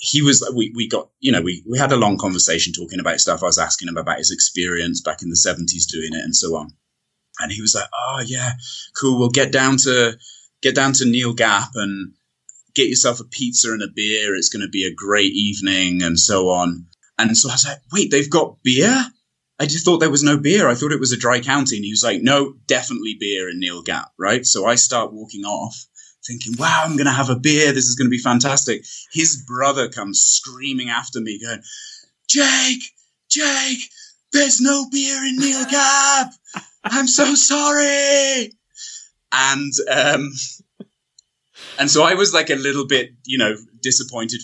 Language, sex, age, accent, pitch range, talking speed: English, male, 30-49, British, 110-150 Hz, 200 wpm